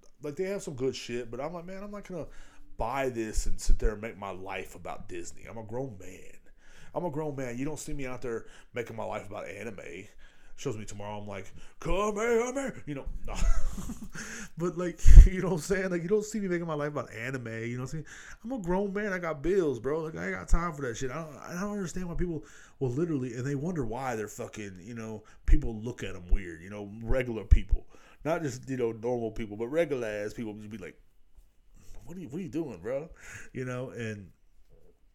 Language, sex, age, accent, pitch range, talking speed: English, male, 30-49, American, 100-155 Hz, 245 wpm